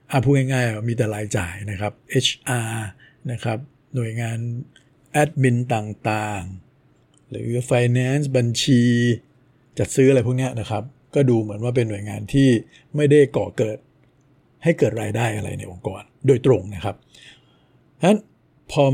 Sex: male